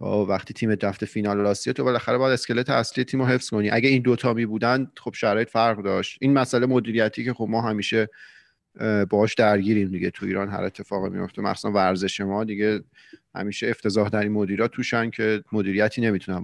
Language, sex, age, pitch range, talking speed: Persian, male, 30-49, 105-130 Hz, 185 wpm